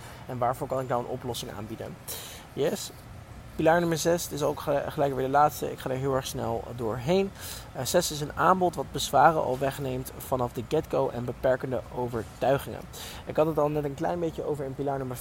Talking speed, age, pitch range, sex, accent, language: 210 wpm, 20-39, 125-145 Hz, male, Dutch, Dutch